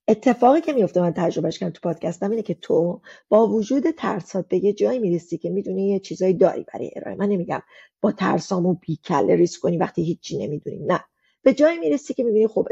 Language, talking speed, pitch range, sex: Persian, 205 wpm, 180-270 Hz, female